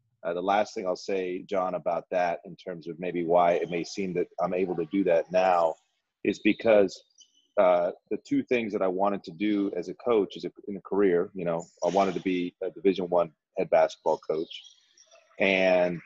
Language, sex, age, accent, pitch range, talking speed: English, male, 30-49, American, 90-105 Hz, 210 wpm